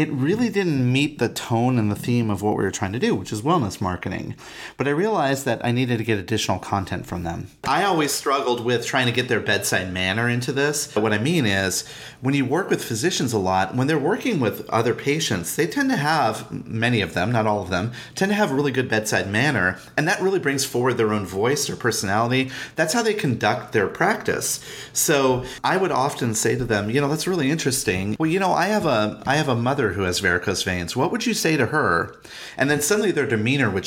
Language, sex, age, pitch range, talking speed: English, male, 30-49, 105-135 Hz, 235 wpm